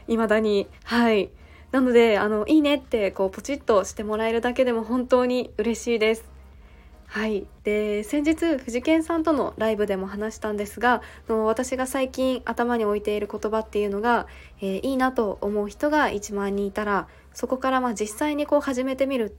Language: Japanese